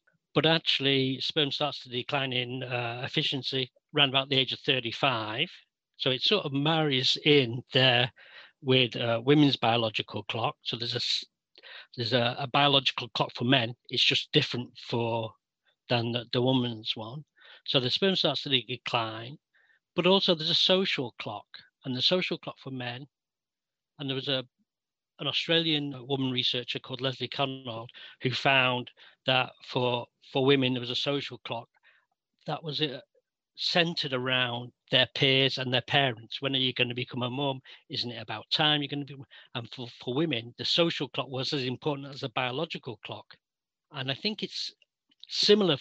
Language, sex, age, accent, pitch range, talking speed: English, male, 40-59, British, 125-145 Hz, 170 wpm